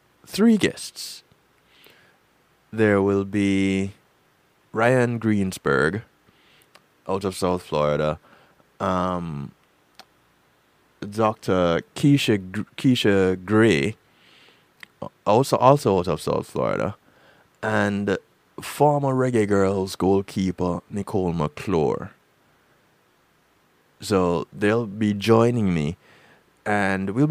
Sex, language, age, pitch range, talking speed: male, English, 20-39, 90-120 Hz, 80 wpm